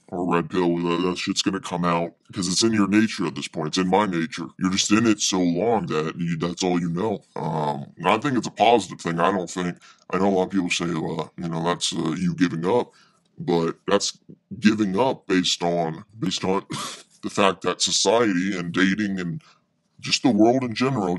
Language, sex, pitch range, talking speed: English, female, 90-120 Hz, 225 wpm